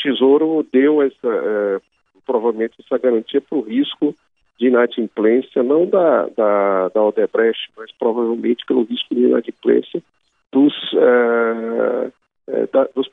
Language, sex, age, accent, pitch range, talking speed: Portuguese, male, 50-69, Brazilian, 105-125 Hz, 110 wpm